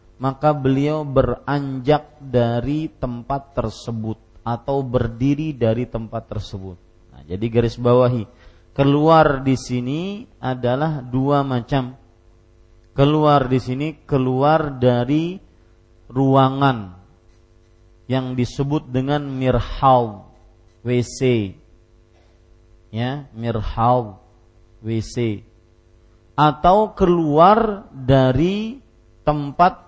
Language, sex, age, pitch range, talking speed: Malay, male, 40-59, 90-145 Hz, 80 wpm